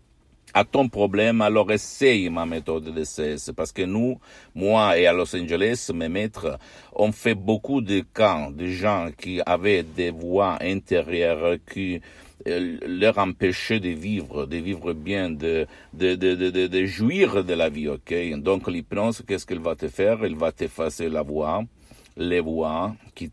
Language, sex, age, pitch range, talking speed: Italian, male, 60-79, 80-105 Hz, 170 wpm